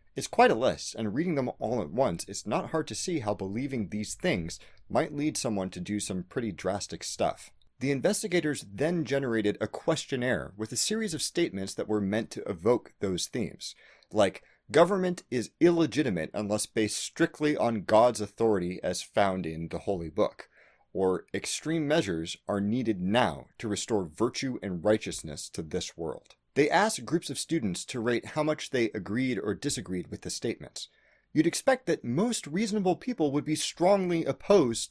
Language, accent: English, American